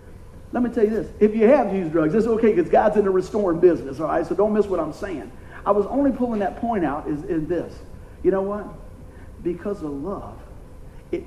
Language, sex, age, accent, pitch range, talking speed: English, male, 50-69, American, 155-220 Hz, 230 wpm